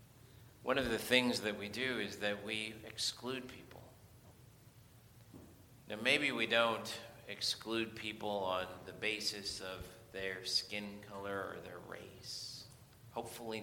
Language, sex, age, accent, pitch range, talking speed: English, male, 40-59, American, 115-135 Hz, 130 wpm